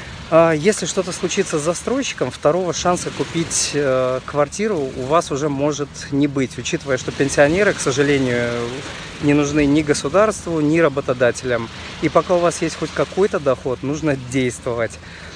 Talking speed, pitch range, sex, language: 140 wpm, 125-160 Hz, male, Russian